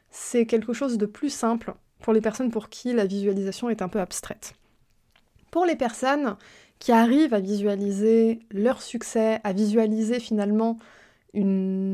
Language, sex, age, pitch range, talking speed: French, female, 20-39, 210-260 Hz, 150 wpm